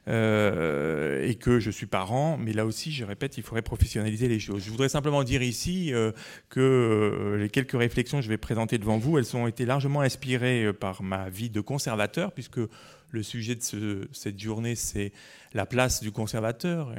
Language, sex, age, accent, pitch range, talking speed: French, male, 40-59, French, 105-125 Hz, 185 wpm